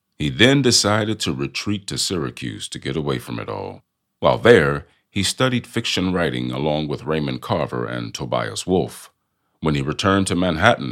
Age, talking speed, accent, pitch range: 50-69, 170 wpm, American, 65-105 Hz